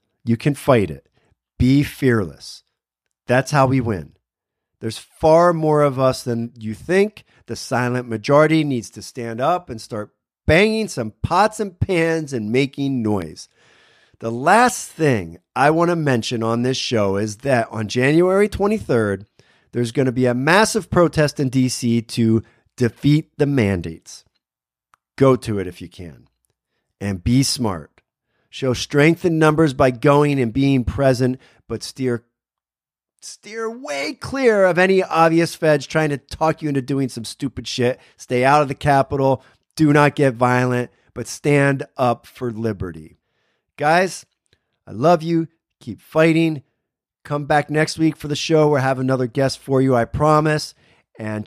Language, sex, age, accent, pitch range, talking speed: English, male, 40-59, American, 115-150 Hz, 155 wpm